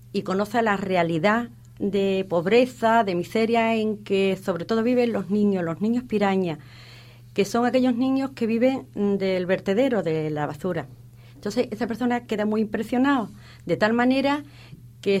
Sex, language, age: female, Spanish, 40-59